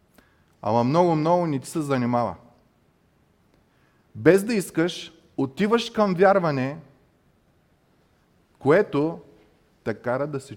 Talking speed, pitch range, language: 95 wpm, 120-185 Hz, Bulgarian